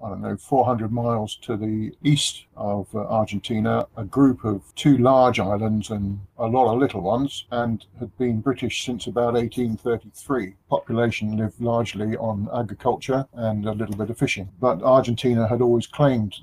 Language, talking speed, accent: English, 160 wpm, British